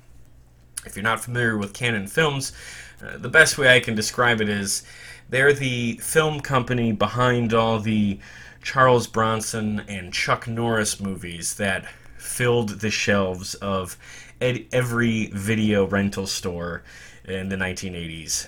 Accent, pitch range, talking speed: American, 95-120 Hz, 135 wpm